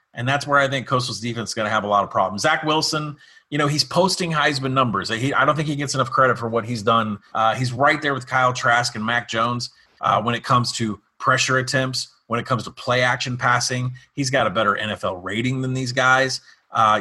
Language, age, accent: English, 30-49, American